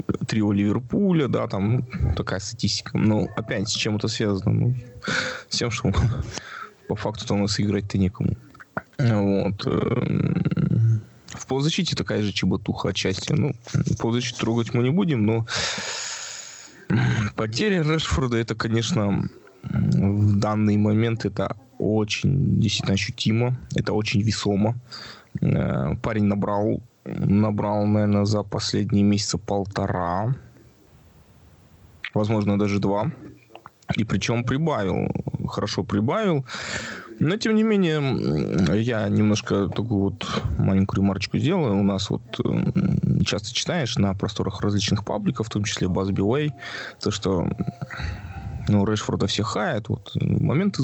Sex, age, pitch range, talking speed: male, 20-39, 100-120 Hz, 120 wpm